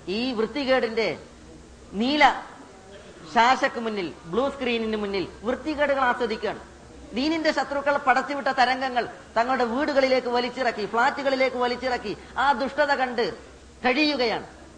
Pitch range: 240-280 Hz